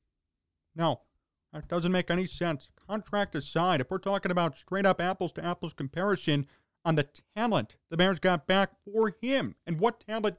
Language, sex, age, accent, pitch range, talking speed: English, male, 30-49, American, 150-210 Hz, 155 wpm